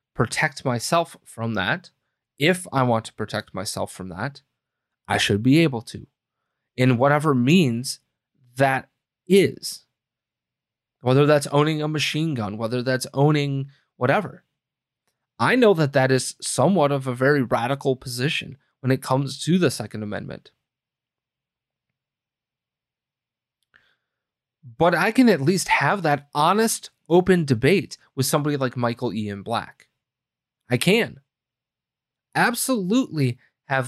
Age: 20-39